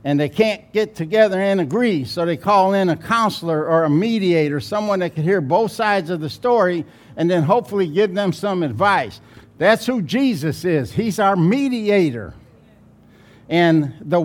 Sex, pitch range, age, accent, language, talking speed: male, 160-220 Hz, 60-79, American, English, 175 wpm